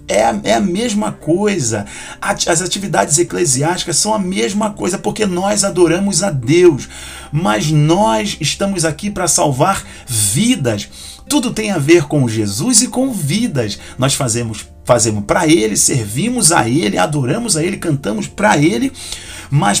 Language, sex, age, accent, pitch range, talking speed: Portuguese, male, 40-59, Brazilian, 150-205 Hz, 145 wpm